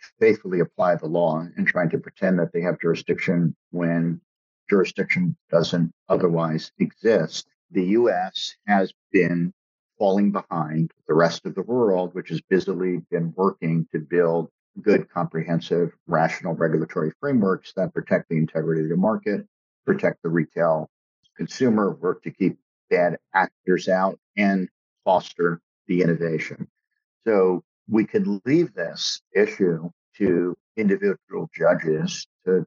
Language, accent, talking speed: English, American, 130 wpm